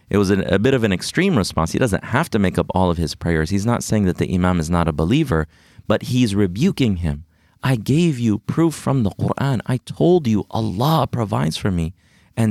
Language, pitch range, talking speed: English, 90-125 Hz, 225 wpm